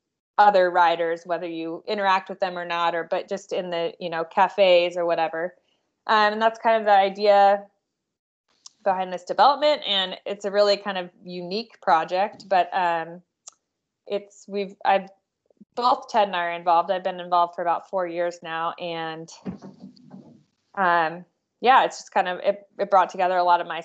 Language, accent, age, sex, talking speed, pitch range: English, American, 20-39, female, 180 wpm, 165-195 Hz